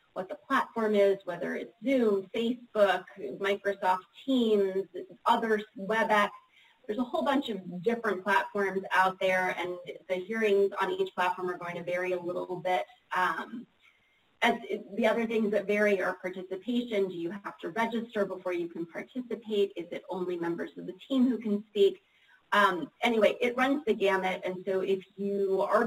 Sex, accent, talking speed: female, American, 170 wpm